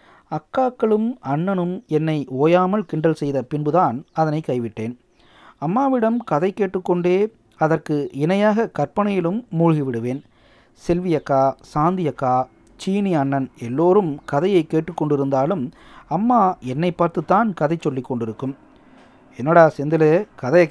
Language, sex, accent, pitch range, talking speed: Tamil, male, native, 145-195 Hz, 95 wpm